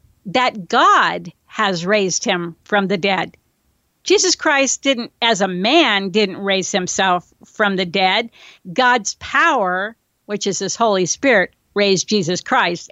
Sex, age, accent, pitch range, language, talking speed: female, 50-69, American, 180-225 Hz, English, 140 wpm